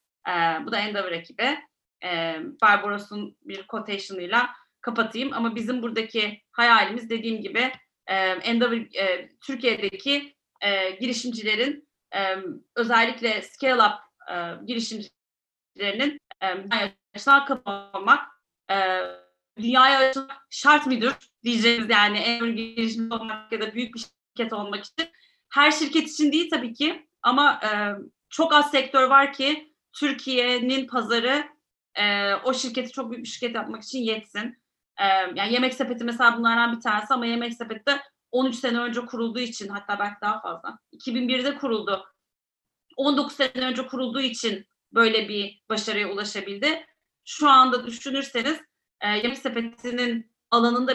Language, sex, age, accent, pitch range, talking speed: Turkish, female, 30-49, native, 210-270 Hz, 135 wpm